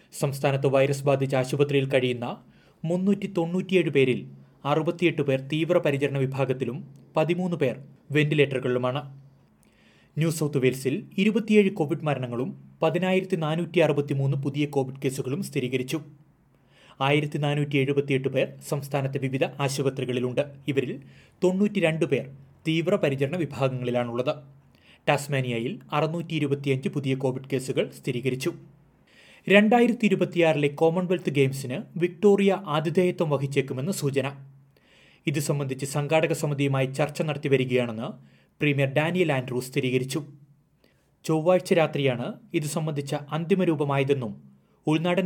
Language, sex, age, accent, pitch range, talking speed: Malayalam, male, 30-49, native, 135-165 Hz, 100 wpm